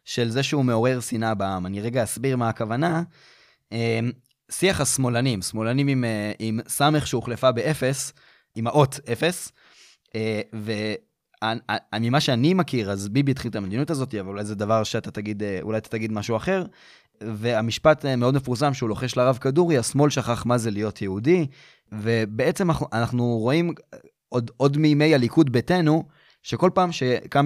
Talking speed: 145 wpm